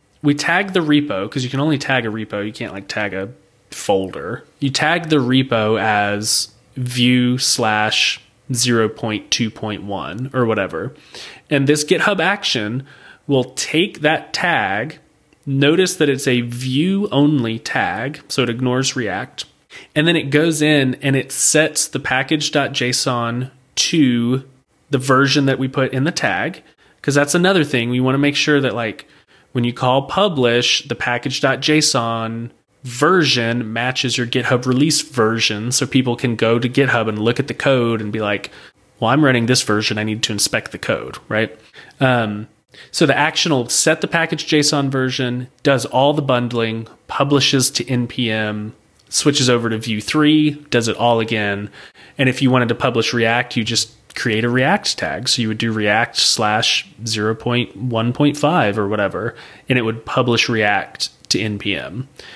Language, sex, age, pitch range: English, male, 30-49, 115-145 Hz